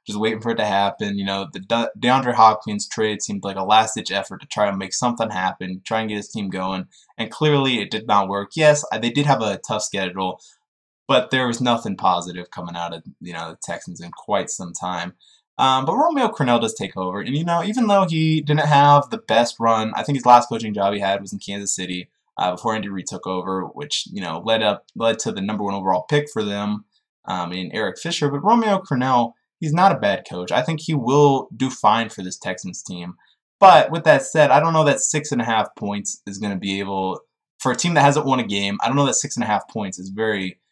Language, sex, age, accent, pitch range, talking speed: English, male, 20-39, American, 100-135 Hz, 245 wpm